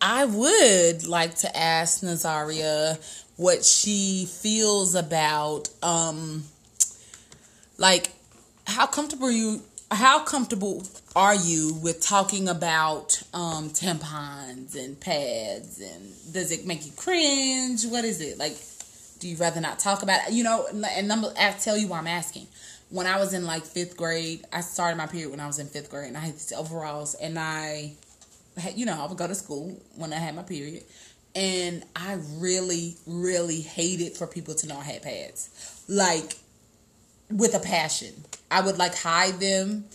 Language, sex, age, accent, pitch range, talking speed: English, female, 20-39, American, 160-195 Hz, 165 wpm